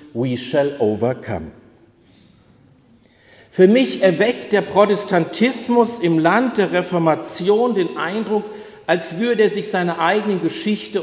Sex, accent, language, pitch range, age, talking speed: male, German, German, 145-195 Hz, 50-69, 115 wpm